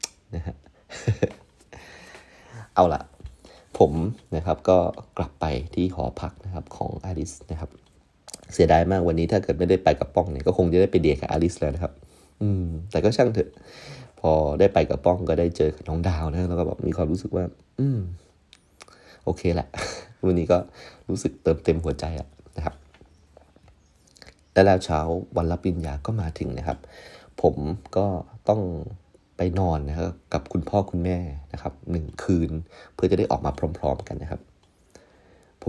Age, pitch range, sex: 30-49, 75-90 Hz, male